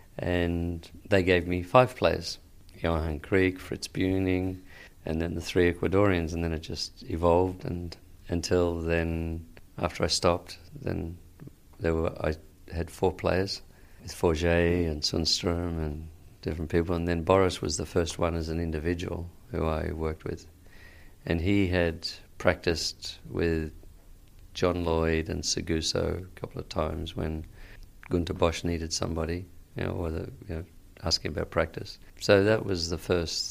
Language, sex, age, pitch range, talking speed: English, male, 50-69, 85-90 Hz, 150 wpm